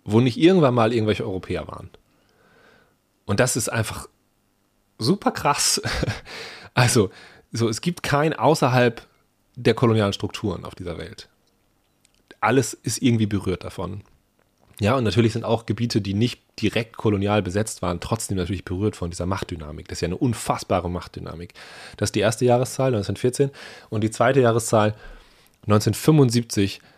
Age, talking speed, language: 30-49, 140 wpm, German